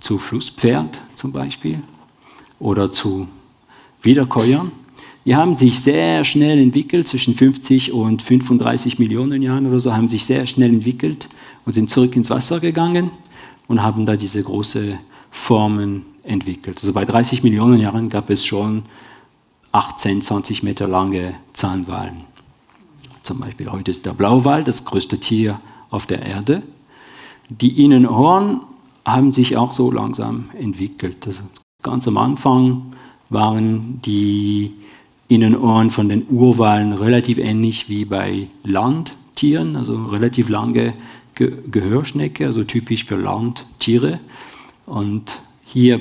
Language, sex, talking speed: English, male, 130 wpm